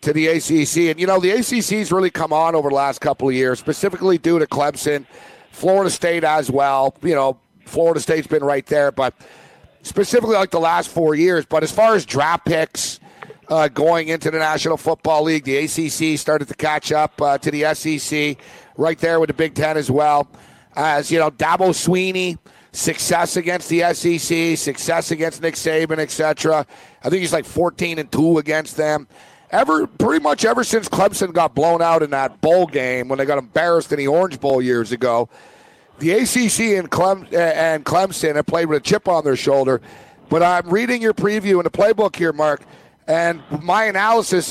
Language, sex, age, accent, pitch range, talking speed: English, male, 50-69, American, 150-180 Hz, 195 wpm